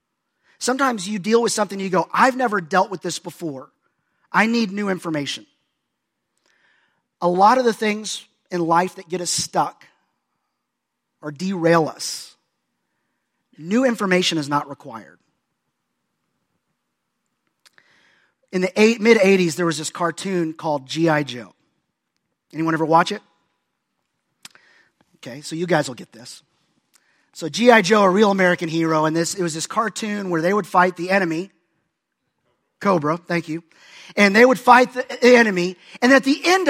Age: 30-49